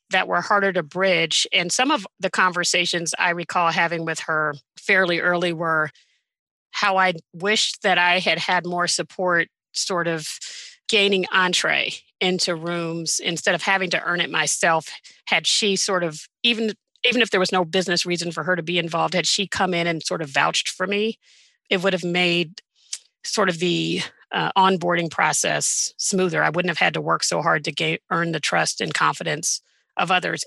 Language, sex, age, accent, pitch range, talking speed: English, female, 40-59, American, 170-195 Hz, 185 wpm